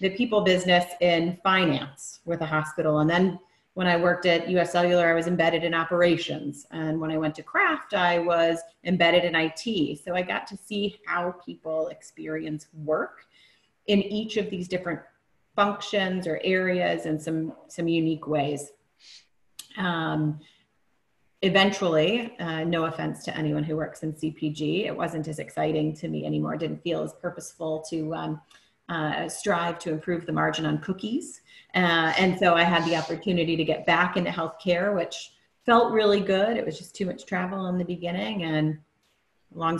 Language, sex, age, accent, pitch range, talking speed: English, female, 30-49, American, 155-180 Hz, 170 wpm